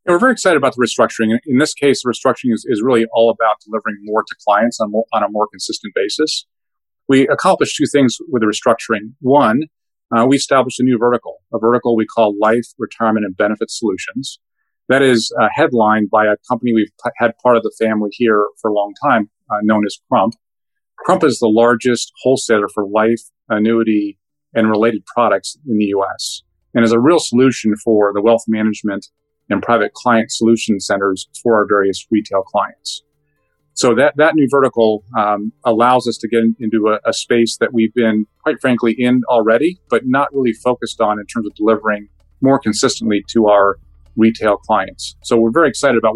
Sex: male